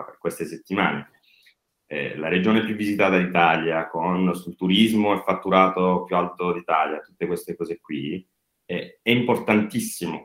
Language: Italian